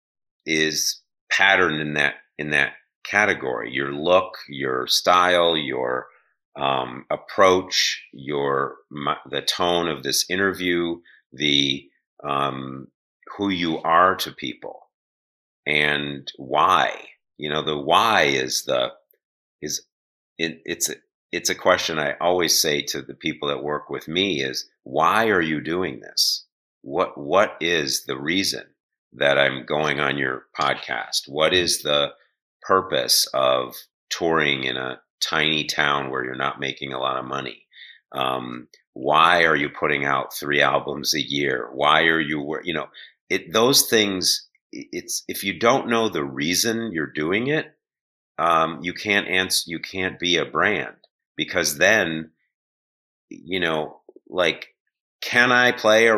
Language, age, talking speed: English, 50-69, 145 wpm